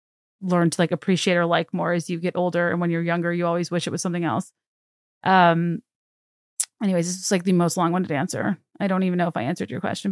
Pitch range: 175-225 Hz